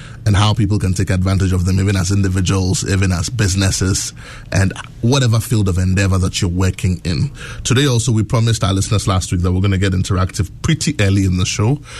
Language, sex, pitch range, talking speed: English, male, 95-120 Hz, 210 wpm